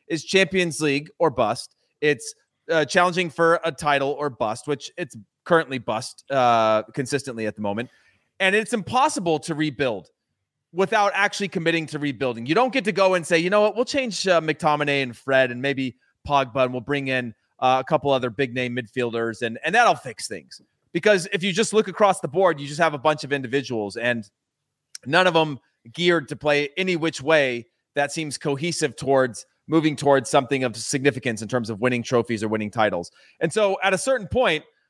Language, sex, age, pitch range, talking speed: English, male, 30-49, 135-185 Hz, 200 wpm